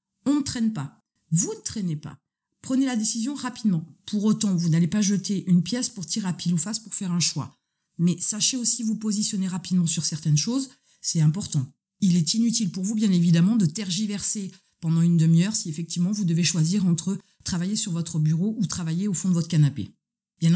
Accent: French